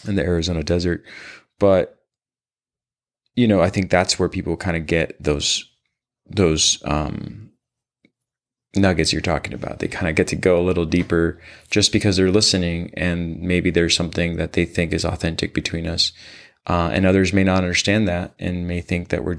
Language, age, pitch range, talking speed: English, 20-39, 85-95 Hz, 180 wpm